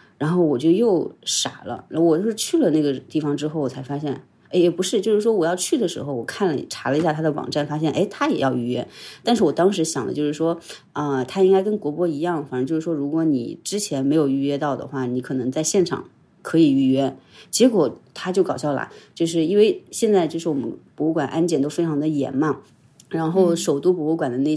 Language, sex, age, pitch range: Chinese, female, 30-49, 145-180 Hz